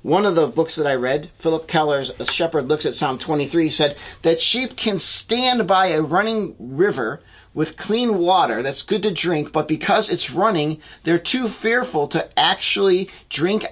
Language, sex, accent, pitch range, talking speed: English, male, American, 145-190 Hz, 175 wpm